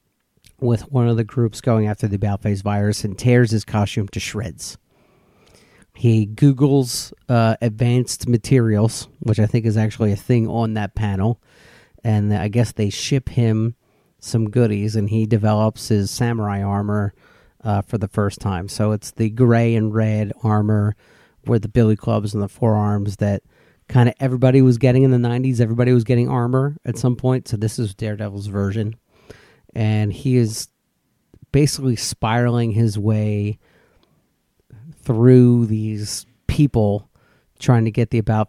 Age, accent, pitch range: 40-59, American, 105-120 Hz